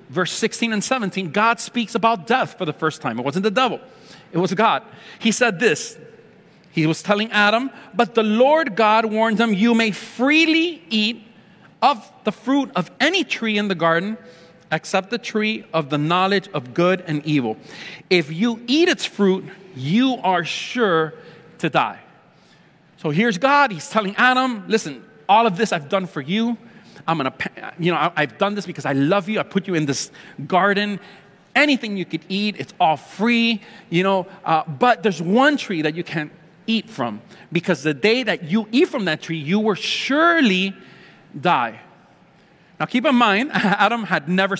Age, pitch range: 40-59, 170-225 Hz